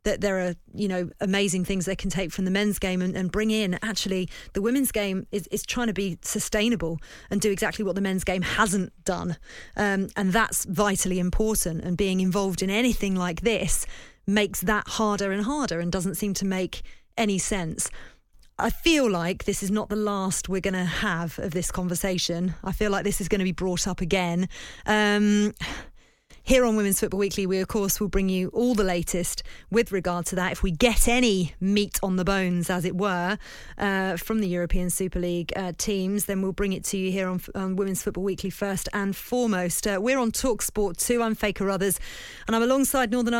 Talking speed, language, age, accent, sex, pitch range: 210 wpm, English, 30-49, British, female, 185-220 Hz